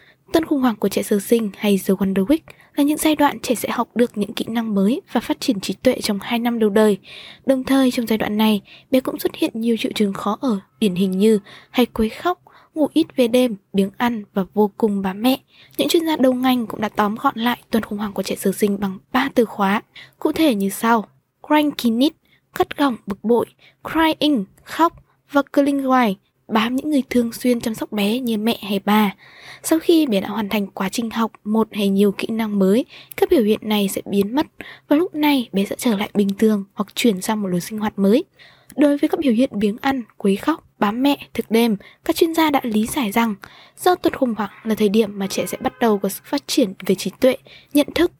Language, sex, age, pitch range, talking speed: Vietnamese, female, 20-39, 210-275 Hz, 240 wpm